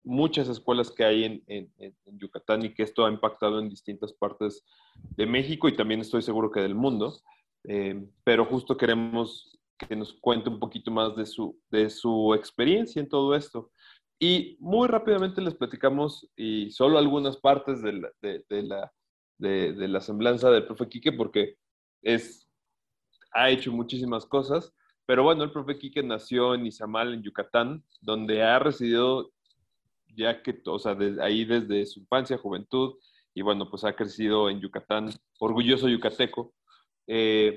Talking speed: 165 wpm